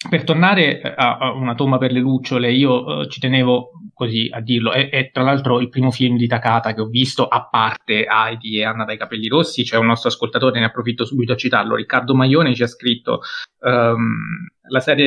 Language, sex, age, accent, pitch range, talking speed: Italian, male, 20-39, native, 115-135 Hz, 200 wpm